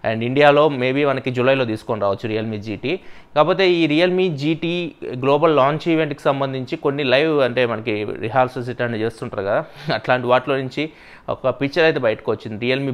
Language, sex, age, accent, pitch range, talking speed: English, male, 20-39, Indian, 115-145 Hz, 115 wpm